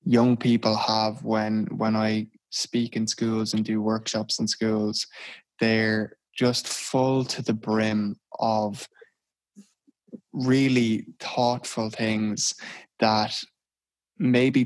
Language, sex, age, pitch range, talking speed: English, male, 20-39, 110-125 Hz, 105 wpm